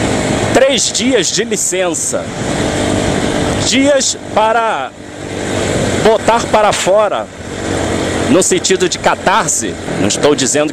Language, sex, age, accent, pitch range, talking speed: Portuguese, male, 40-59, Brazilian, 185-230 Hz, 90 wpm